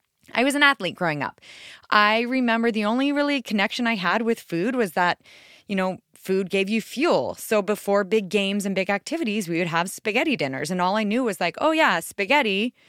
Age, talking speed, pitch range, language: 20-39, 210 wpm, 160-210 Hz, English